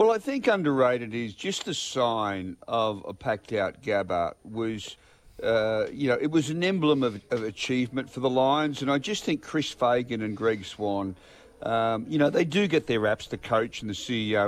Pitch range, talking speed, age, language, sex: 100-135 Hz, 205 wpm, 50-69, English, male